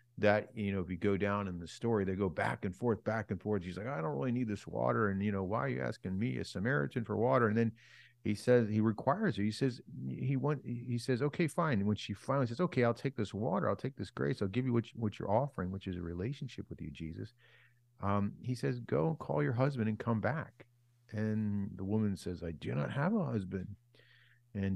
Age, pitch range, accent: 50-69, 100-125 Hz, American